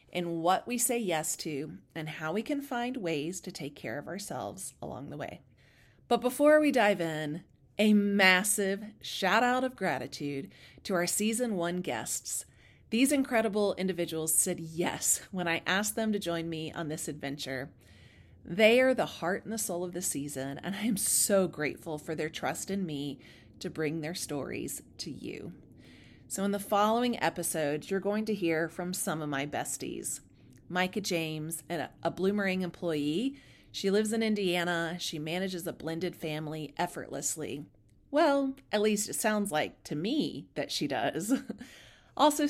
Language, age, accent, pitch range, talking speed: English, 30-49, American, 155-210 Hz, 165 wpm